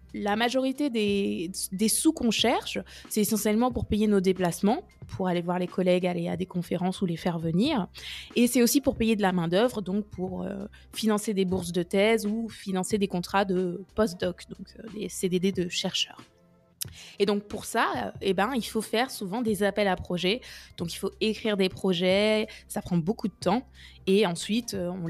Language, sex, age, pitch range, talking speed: French, female, 20-39, 180-220 Hz, 200 wpm